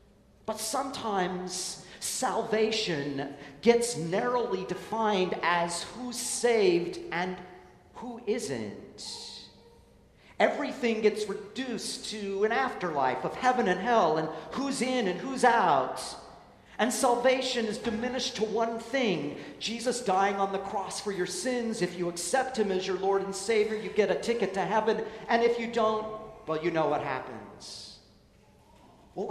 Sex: male